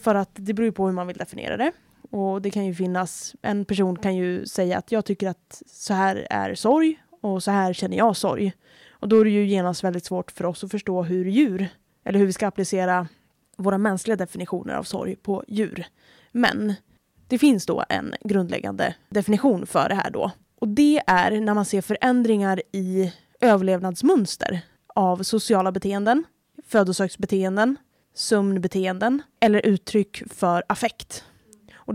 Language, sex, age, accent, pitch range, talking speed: Swedish, female, 10-29, Norwegian, 185-220 Hz, 170 wpm